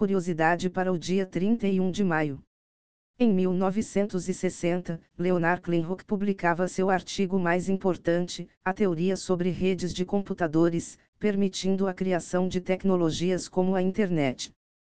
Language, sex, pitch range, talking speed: Portuguese, female, 170-190 Hz, 120 wpm